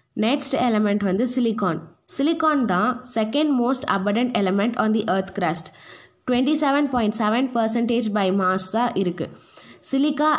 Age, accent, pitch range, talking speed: 20-39, native, 205-255 Hz, 135 wpm